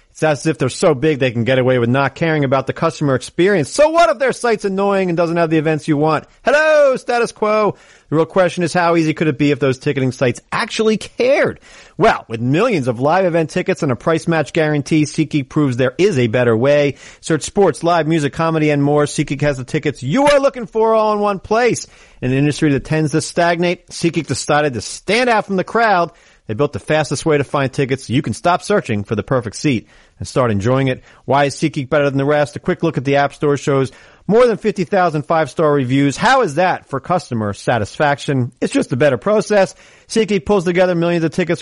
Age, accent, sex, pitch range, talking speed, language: 40-59, American, male, 140-185 Hz, 230 wpm, English